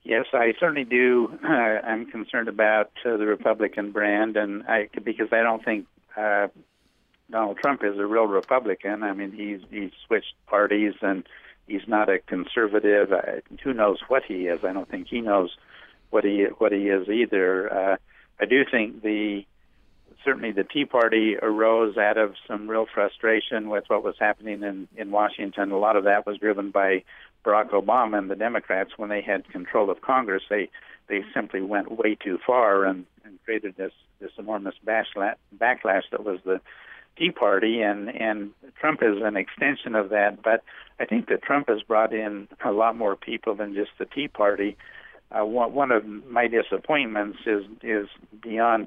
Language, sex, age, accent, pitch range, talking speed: English, male, 60-79, American, 100-110 Hz, 180 wpm